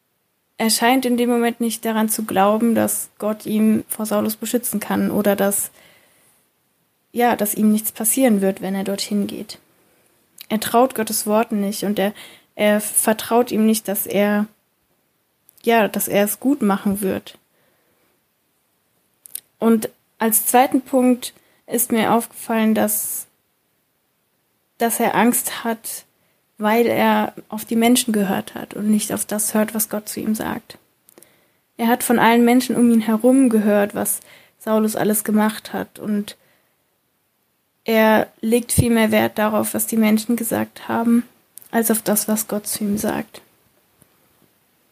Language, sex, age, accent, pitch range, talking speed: German, female, 20-39, German, 210-235 Hz, 150 wpm